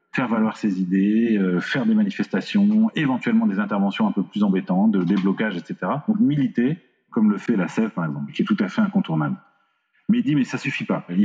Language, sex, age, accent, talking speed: French, male, 40-59, French, 220 wpm